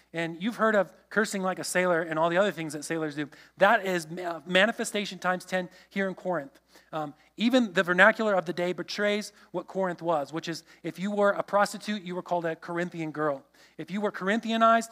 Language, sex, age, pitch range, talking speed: English, male, 30-49, 170-205 Hz, 210 wpm